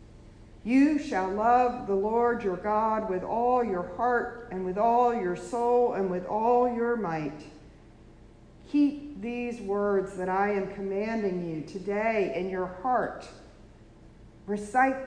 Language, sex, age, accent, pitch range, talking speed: English, female, 50-69, American, 170-245 Hz, 135 wpm